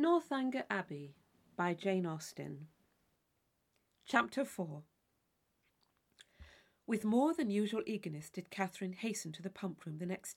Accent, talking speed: British, 120 wpm